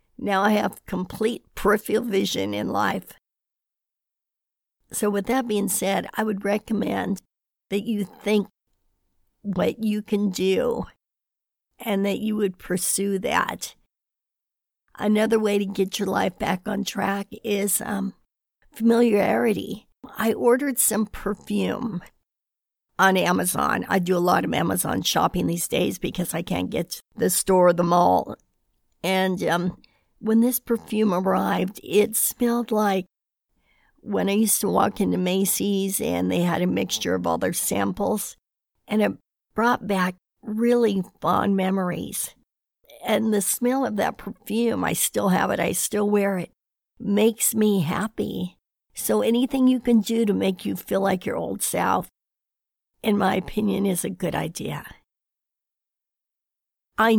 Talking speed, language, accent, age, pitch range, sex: 145 wpm, English, American, 60-79, 190-220 Hz, female